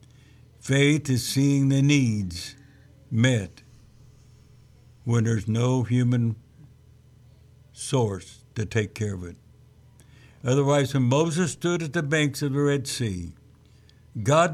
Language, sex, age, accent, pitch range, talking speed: English, male, 60-79, American, 115-135 Hz, 115 wpm